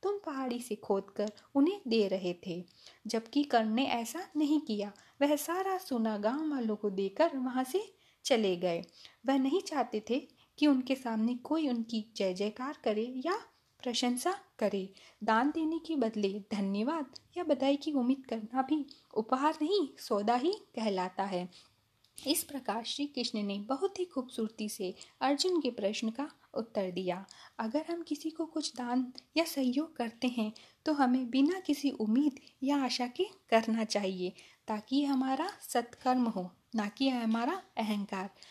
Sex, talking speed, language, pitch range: female, 150 wpm, Hindi, 215-295 Hz